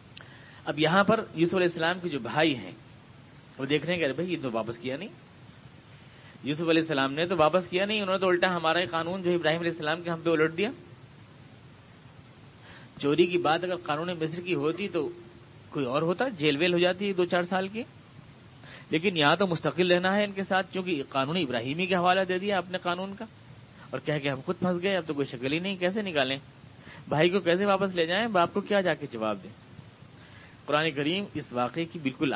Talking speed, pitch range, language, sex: 215 wpm, 130-170 Hz, Urdu, male